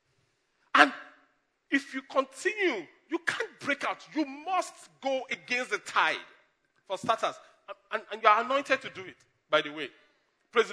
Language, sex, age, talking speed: English, male, 40-59, 160 wpm